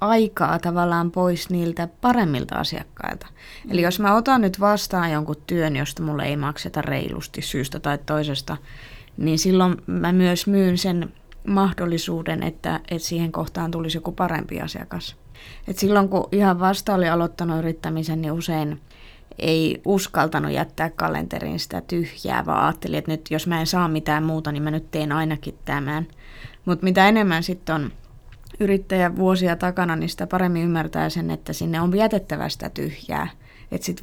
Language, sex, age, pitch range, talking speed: Finnish, female, 20-39, 155-185 Hz, 155 wpm